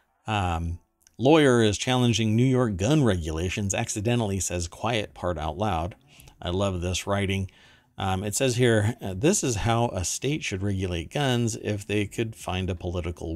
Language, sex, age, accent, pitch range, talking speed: English, male, 50-69, American, 90-120 Hz, 160 wpm